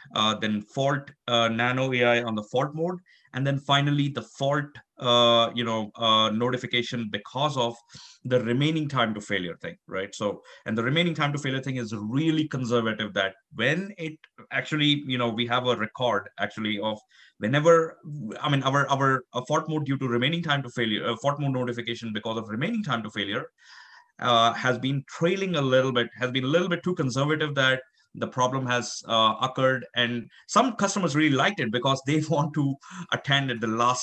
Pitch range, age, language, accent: 115-140 Hz, 30-49, English, Indian